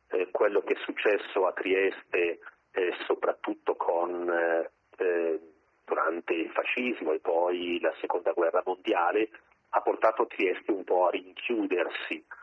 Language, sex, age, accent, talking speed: Italian, male, 40-59, native, 125 wpm